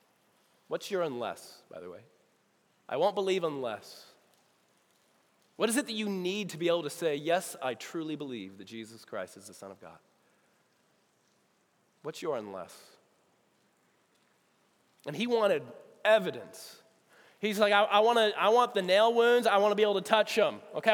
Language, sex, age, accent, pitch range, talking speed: English, male, 30-49, American, 150-210 Hz, 170 wpm